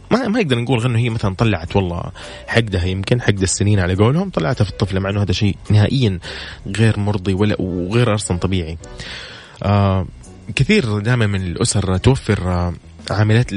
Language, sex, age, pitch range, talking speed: English, male, 20-39, 95-120 Hz, 150 wpm